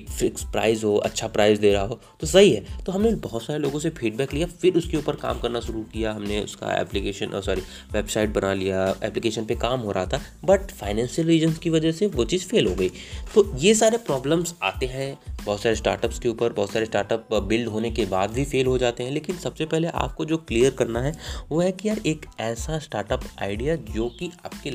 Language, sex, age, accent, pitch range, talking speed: Hindi, male, 30-49, native, 110-165 Hz, 225 wpm